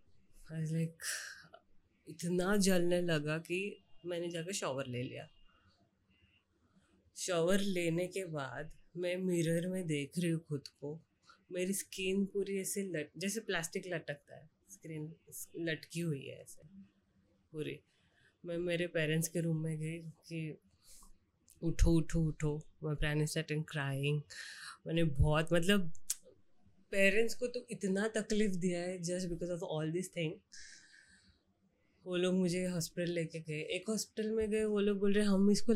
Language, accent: Hindi, native